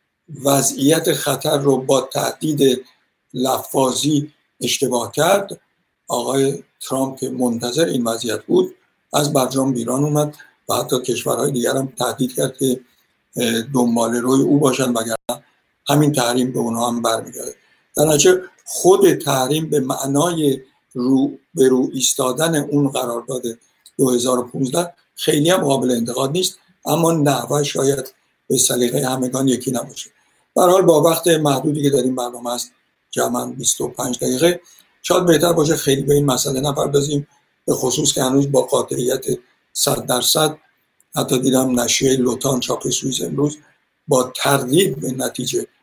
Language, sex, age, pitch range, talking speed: Persian, male, 60-79, 130-150 Hz, 135 wpm